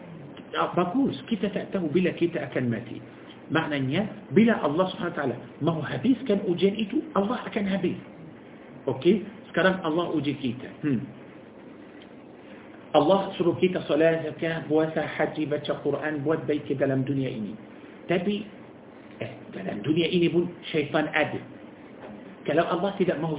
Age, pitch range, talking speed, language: 50-69, 145-175 Hz, 125 wpm, Malay